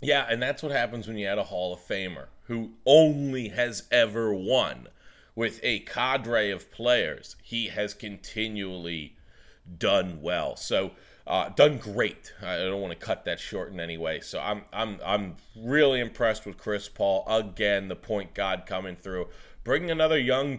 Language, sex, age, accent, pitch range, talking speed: English, male, 30-49, American, 100-135 Hz, 170 wpm